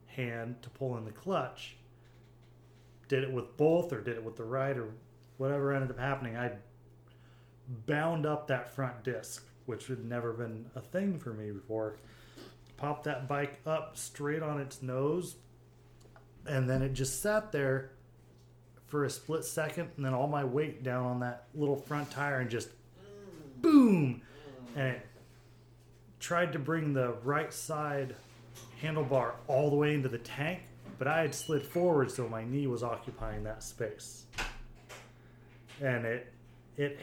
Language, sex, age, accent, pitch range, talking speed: English, male, 30-49, American, 120-145 Hz, 160 wpm